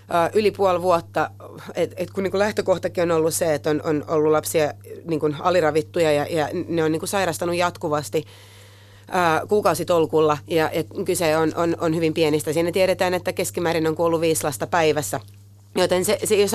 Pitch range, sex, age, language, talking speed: 150-185 Hz, female, 30-49, Finnish, 140 wpm